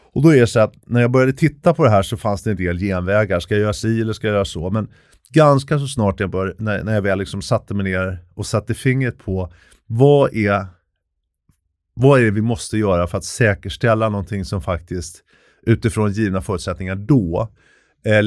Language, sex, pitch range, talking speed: Swedish, male, 95-120 Hz, 210 wpm